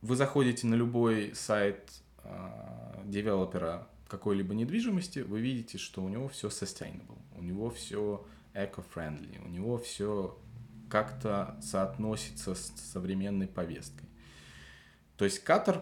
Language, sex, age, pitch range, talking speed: Russian, male, 20-39, 90-115 Hz, 120 wpm